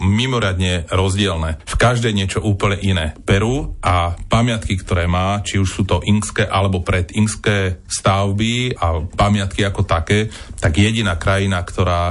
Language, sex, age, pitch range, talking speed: Slovak, male, 30-49, 90-105 Hz, 140 wpm